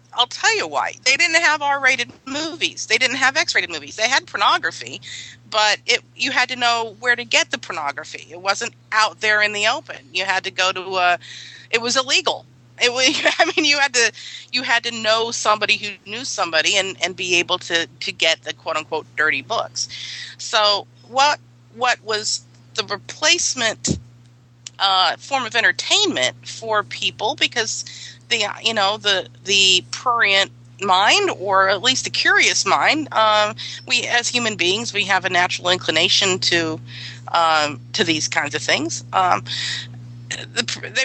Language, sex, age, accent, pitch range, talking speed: English, female, 40-59, American, 140-240 Hz, 165 wpm